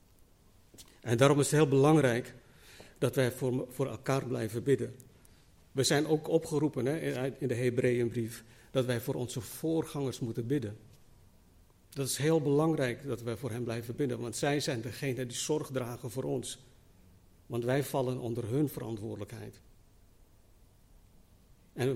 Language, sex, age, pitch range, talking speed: Dutch, male, 60-79, 105-135 Hz, 145 wpm